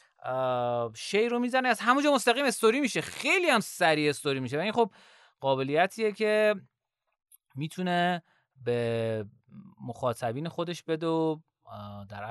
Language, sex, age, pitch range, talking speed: Persian, male, 30-49, 120-195 Hz, 120 wpm